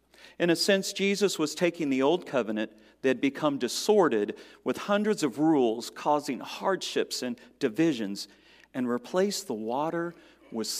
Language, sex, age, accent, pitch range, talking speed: English, male, 40-59, American, 135-205 Hz, 145 wpm